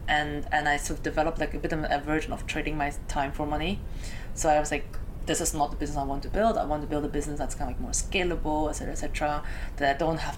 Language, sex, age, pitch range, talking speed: English, female, 20-39, 145-165 Hz, 295 wpm